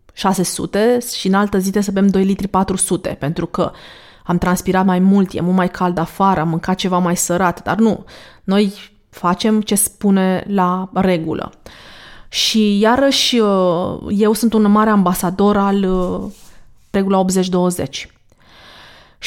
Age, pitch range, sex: 20-39, 185-215 Hz, female